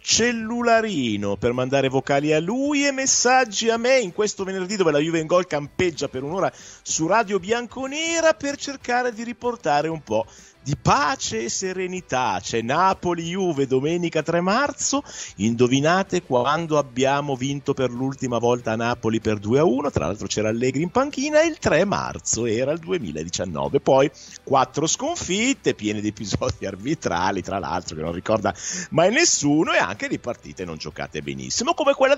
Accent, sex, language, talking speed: native, male, Italian, 160 wpm